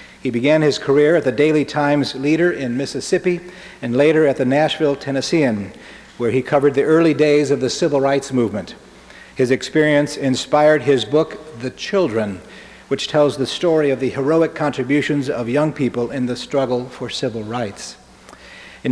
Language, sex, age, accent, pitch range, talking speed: English, male, 50-69, American, 125-150 Hz, 170 wpm